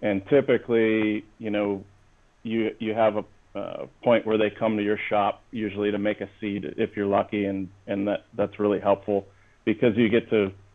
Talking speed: 190 wpm